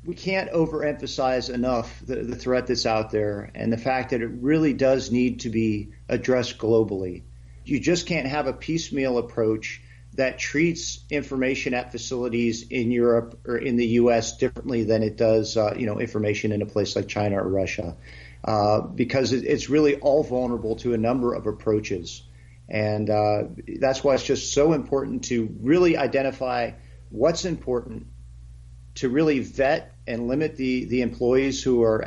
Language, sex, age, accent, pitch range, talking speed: English, male, 40-59, American, 105-135 Hz, 165 wpm